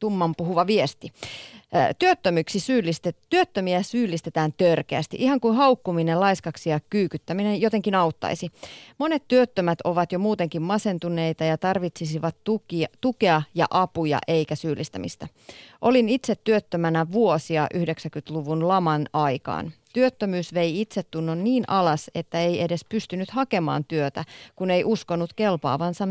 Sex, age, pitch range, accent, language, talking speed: female, 30-49, 155-205 Hz, native, Finnish, 120 wpm